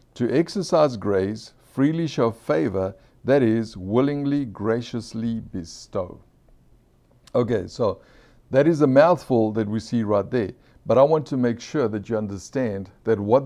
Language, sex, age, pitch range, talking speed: English, male, 50-69, 105-130 Hz, 145 wpm